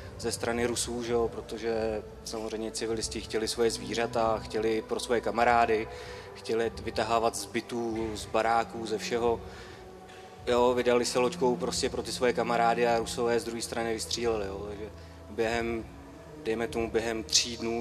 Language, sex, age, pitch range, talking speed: Czech, male, 30-49, 110-120 Hz, 150 wpm